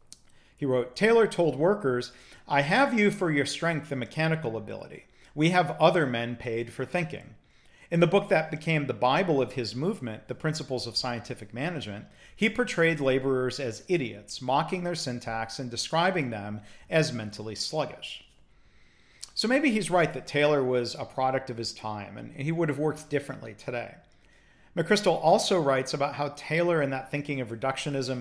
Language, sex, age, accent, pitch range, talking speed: English, male, 40-59, American, 120-160 Hz, 170 wpm